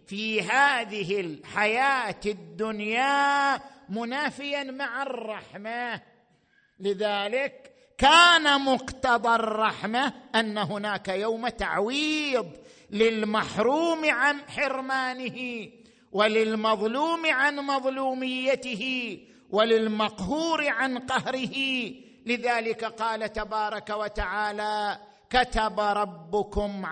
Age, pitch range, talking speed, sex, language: 50-69, 185-245 Hz, 65 wpm, male, Arabic